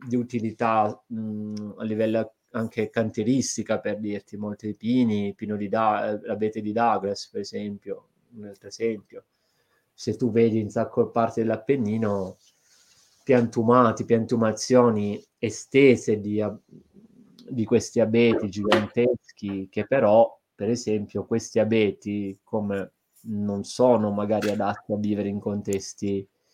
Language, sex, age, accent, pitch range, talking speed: Italian, male, 20-39, native, 105-115 Hz, 120 wpm